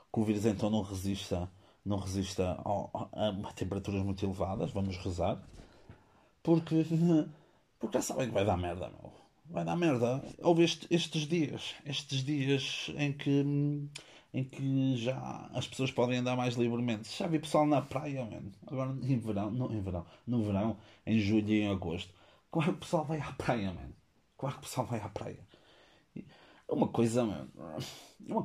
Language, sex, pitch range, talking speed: Portuguese, male, 100-130 Hz, 180 wpm